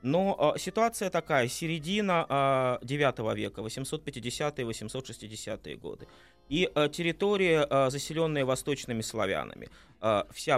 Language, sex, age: Russian, male, 20-39